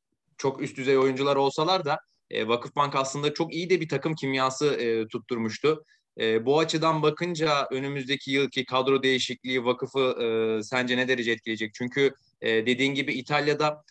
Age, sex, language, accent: 30-49, male, Turkish, native